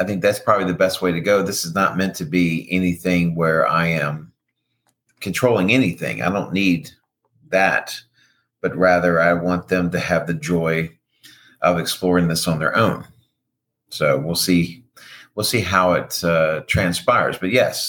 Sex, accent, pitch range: male, American, 80-90 Hz